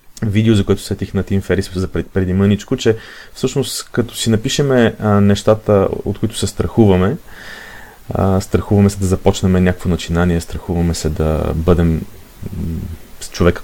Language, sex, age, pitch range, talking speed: Bulgarian, male, 30-49, 90-110 Hz, 130 wpm